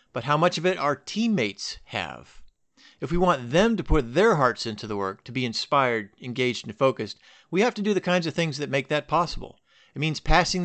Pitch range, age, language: 120-165 Hz, 50-69, English